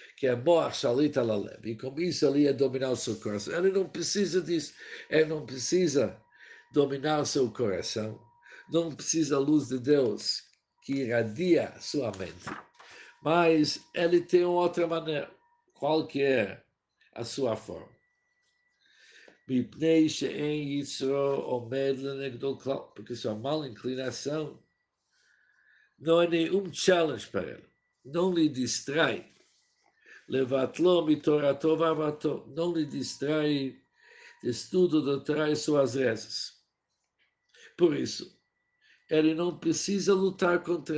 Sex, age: male, 60-79